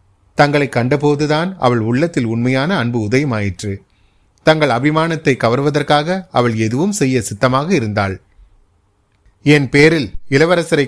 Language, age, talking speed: Tamil, 30-49, 100 wpm